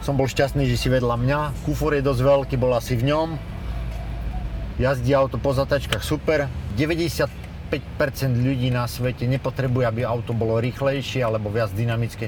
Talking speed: 155 wpm